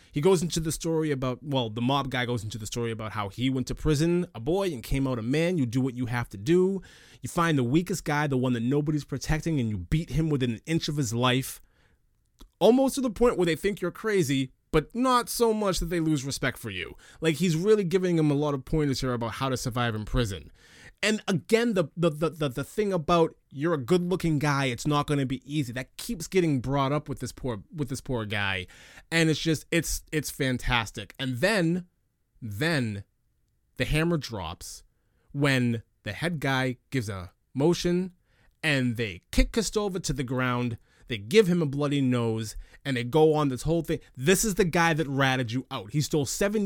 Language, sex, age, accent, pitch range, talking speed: English, male, 30-49, American, 125-170 Hz, 220 wpm